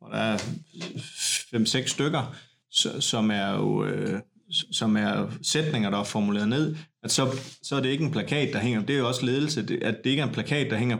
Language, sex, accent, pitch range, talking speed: Danish, male, native, 110-150 Hz, 205 wpm